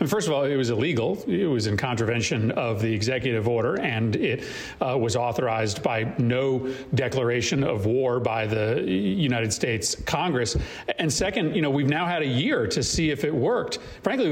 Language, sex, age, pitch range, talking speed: English, male, 40-59, 120-145 Hz, 185 wpm